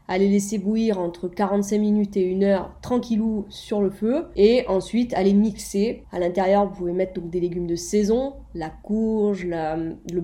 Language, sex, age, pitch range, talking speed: French, female, 20-39, 180-220 Hz, 180 wpm